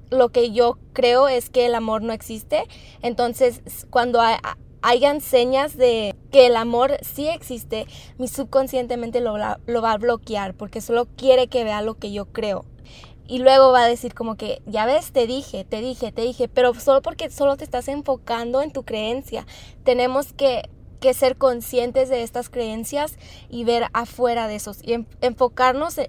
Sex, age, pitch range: female, 20-39, 230-265 Hz